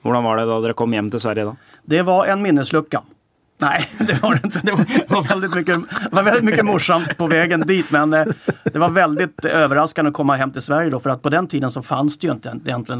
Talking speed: 235 wpm